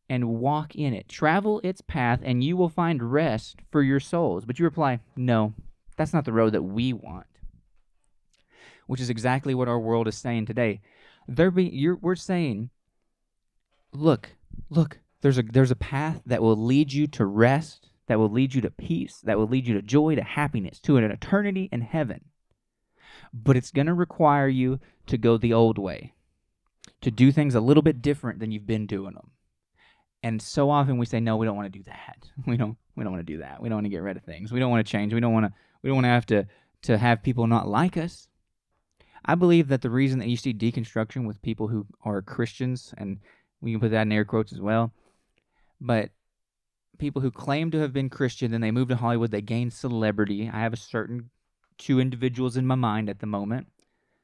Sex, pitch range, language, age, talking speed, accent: male, 110-140 Hz, English, 20-39, 210 wpm, American